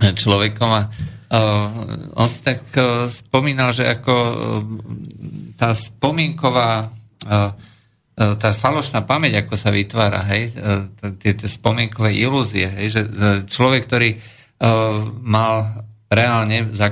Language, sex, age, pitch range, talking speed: Slovak, male, 50-69, 100-115 Hz, 110 wpm